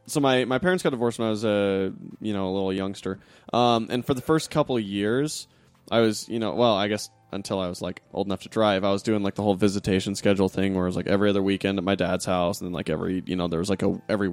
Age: 20-39